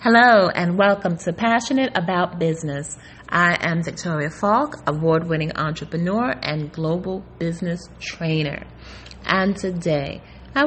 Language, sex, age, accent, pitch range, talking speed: English, female, 30-49, American, 165-225 Hz, 110 wpm